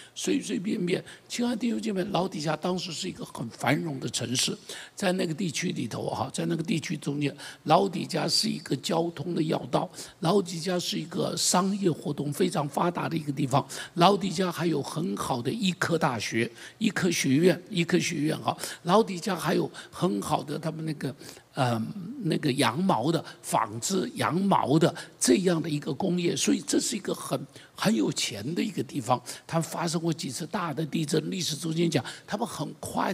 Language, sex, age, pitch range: Chinese, male, 60-79, 145-180 Hz